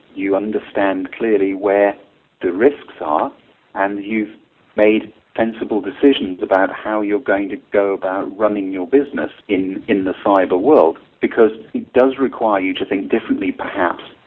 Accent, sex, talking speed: British, male, 150 wpm